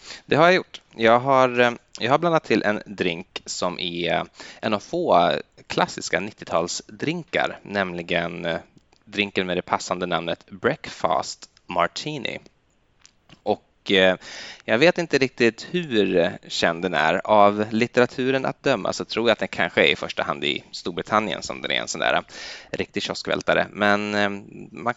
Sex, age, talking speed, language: male, 20-39, 145 wpm, Swedish